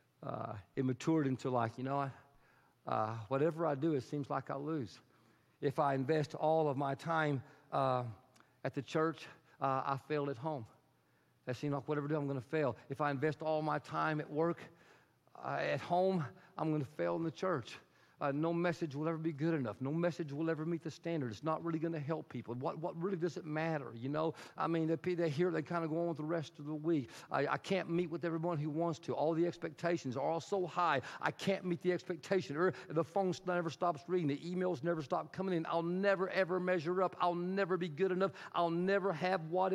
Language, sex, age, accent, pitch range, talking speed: English, male, 50-69, American, 135-170 Hz, 230 wpm